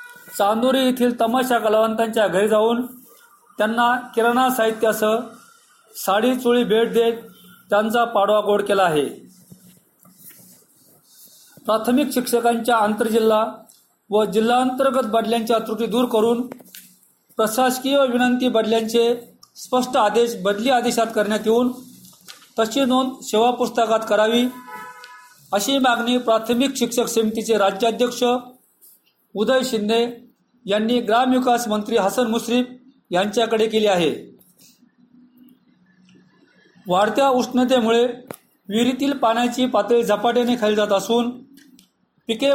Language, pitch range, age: Marathi, 220-250 Hz, 40-59